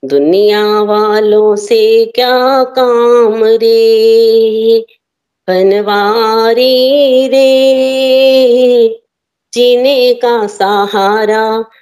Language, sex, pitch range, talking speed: Hindi, female, 235-280 Hz, 50 wpm